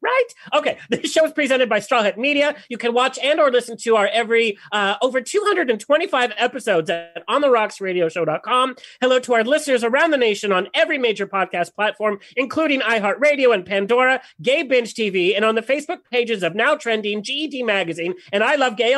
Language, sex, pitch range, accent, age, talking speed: English, male, 205-280 Hz, American, 40-59, 185 wpm